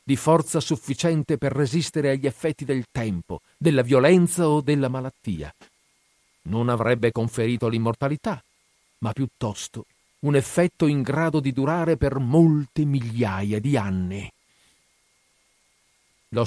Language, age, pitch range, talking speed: Italian, 50-69, 100-145 Hz, 115 wpm